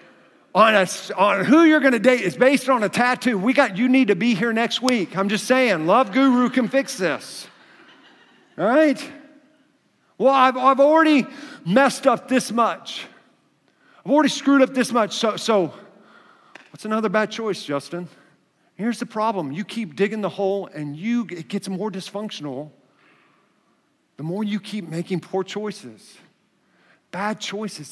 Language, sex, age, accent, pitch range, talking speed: English, male, 50-69, American, 175-240 Hz, 160 wpm